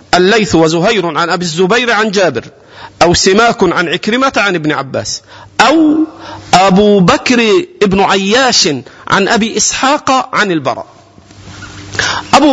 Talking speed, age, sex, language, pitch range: 120 wpm, 40-59, male, Arabic, 145-235 Hz